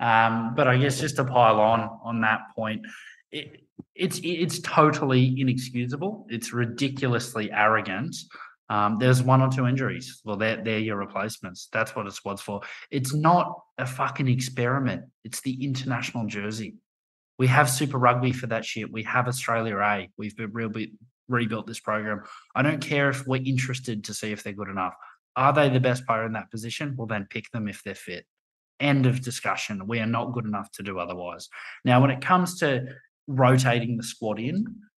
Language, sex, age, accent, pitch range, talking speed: English, male, 20-39, Australian, 110-135 Hz, 185 wpm